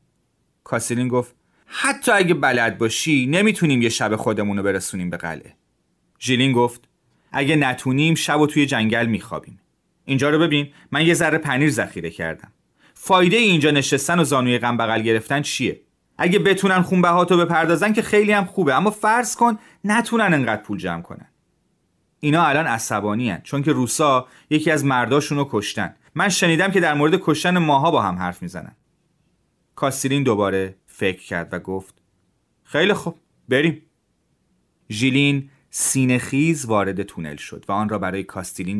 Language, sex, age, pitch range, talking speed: Persian, male, 30-49, 105-155 Hz, 150 wpm